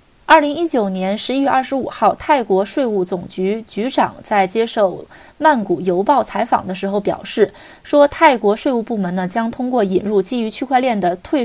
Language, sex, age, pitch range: Chinese, female, 20-39, 195-260 Hz